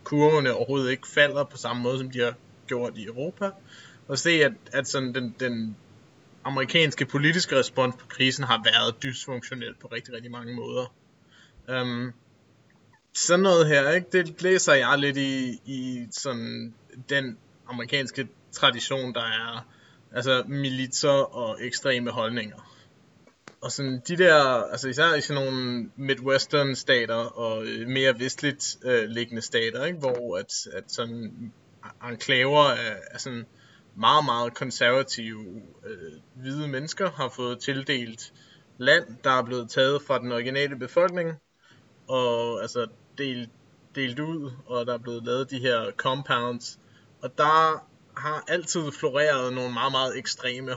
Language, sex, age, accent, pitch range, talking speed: Danish, male, 20-39, native, 120-145 Hz, 140 wpm